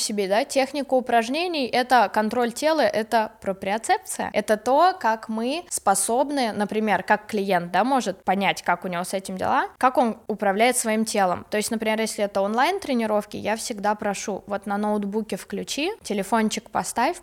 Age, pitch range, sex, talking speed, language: 20-39, 205-245 Hz, female, 165 wpm, Russian